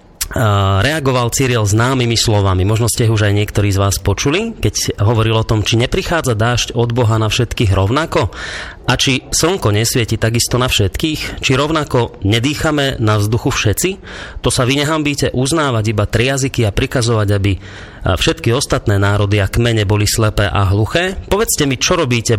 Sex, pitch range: male, 100-130 Hz